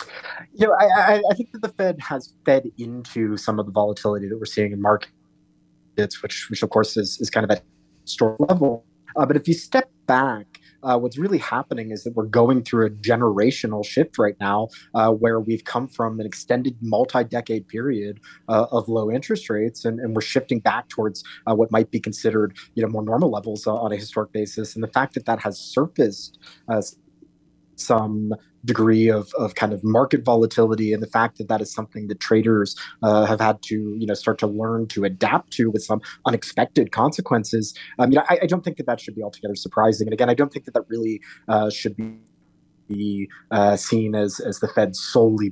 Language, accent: English, American